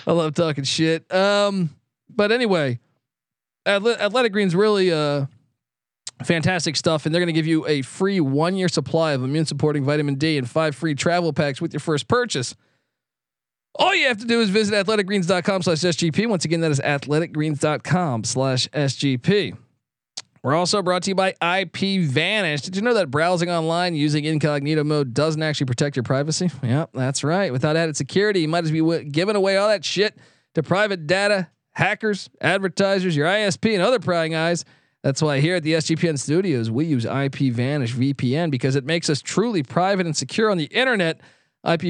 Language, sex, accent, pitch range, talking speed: English, male, American, 140-180 Hz, 180 wpm